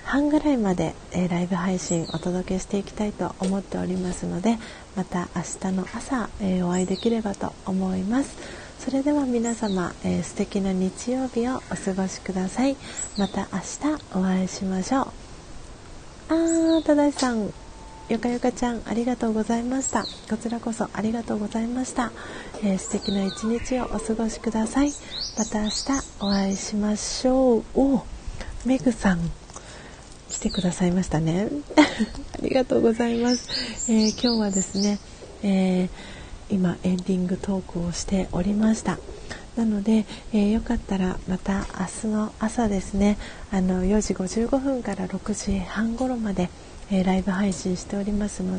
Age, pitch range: 40-59, 190-235 Hz